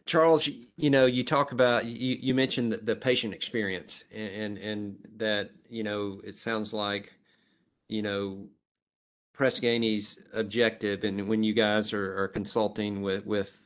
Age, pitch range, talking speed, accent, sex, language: 40-59, 100-115 Hz, 155 wpm, American, male, English